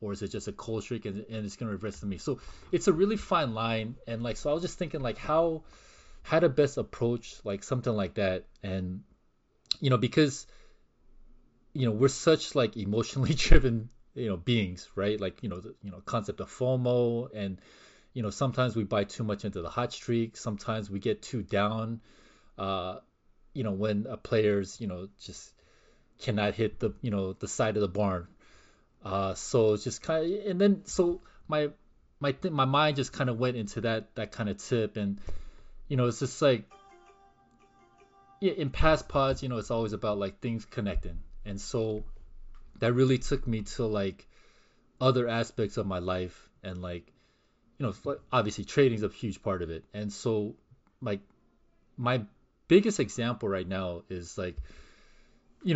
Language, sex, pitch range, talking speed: English, male, 100-130 Hz, 185 wpm